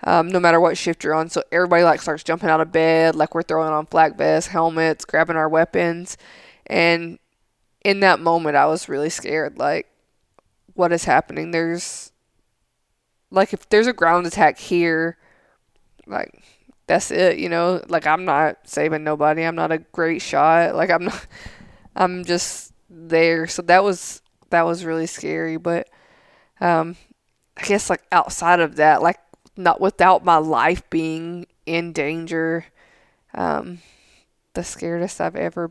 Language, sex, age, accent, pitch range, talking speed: English, female, 20-39, American, 155-175 Hz, 160 wpm